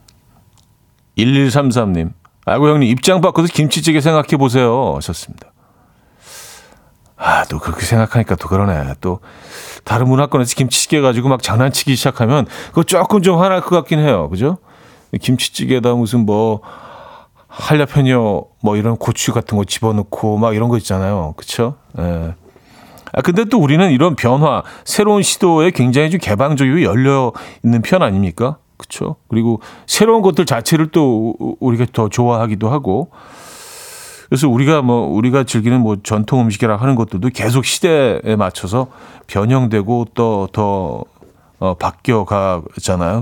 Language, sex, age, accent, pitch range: Korean, male, 40-59, native, 105-145 Hz